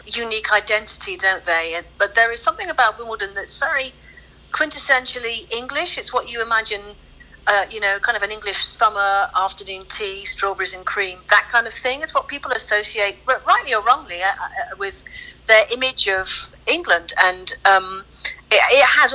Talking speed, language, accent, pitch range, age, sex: 165 wpm, English, British, 190-250 Hz, 40-59, female